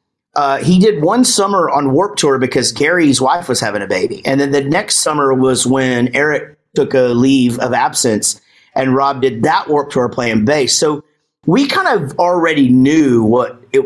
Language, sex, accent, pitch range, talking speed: English, male, American, 125-190 Hz, 190 wpm